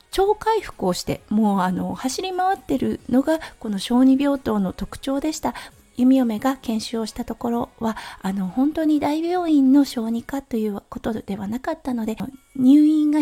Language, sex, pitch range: Japanese, female, 225-290 Hz